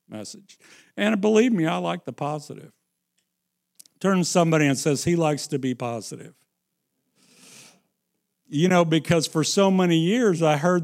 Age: 60-79